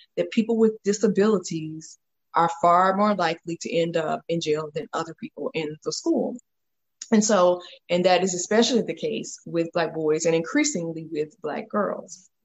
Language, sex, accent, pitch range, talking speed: English, female, American, 175-225 Hz, 170 wpm